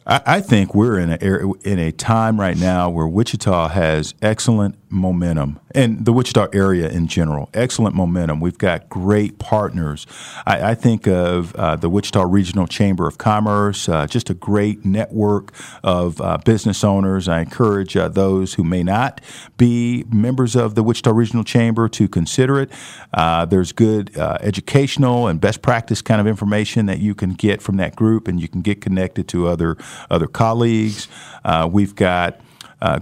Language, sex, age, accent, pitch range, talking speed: English, male, 50-69, American, 95-115 Hz, 175 wpm